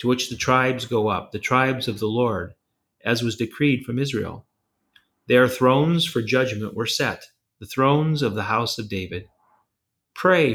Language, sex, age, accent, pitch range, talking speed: English, male, 40-59, American, 105-135 Hz, 170 wpm